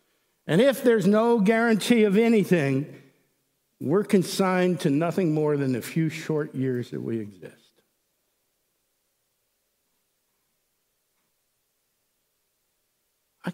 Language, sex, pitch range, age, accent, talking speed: English, male, 155-235 Hz, 60-79, American, 95 wpm